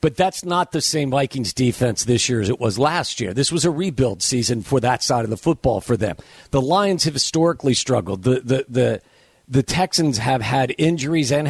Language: English